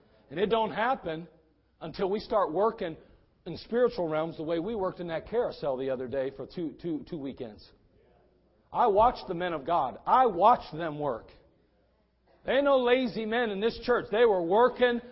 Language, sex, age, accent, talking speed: English, male, 40-59, American, 185 wpm